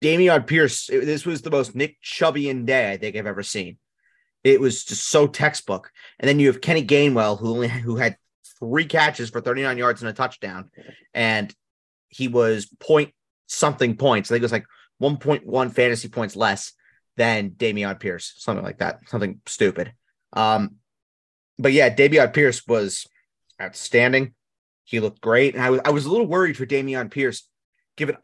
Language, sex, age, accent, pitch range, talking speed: English, male, 30-49, American, 120-155 Hz, 170 wpm